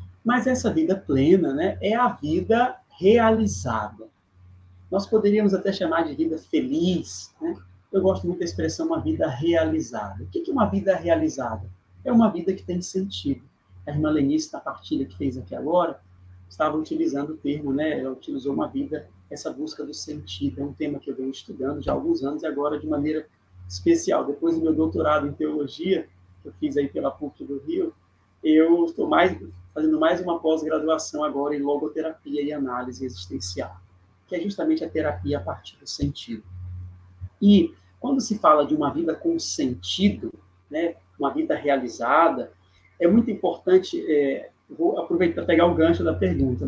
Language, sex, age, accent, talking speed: Portuguese, male, 30-49, Brazilian, 175 wpm